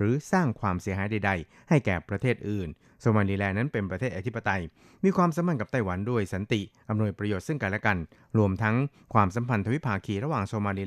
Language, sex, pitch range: Thai, male, 100-125 Hz